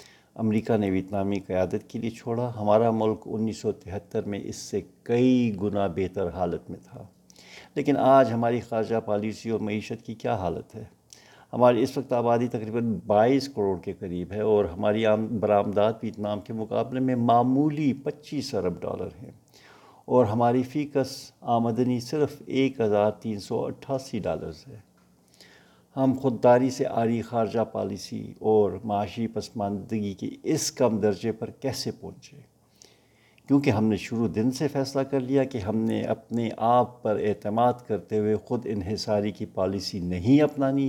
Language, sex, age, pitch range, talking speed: Urdu, male, 60-79, 105-125 Hz, 155 wpm